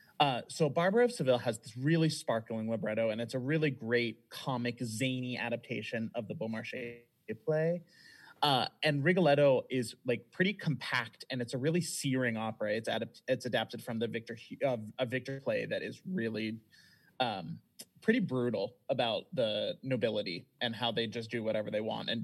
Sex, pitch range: male, 115-145 Hz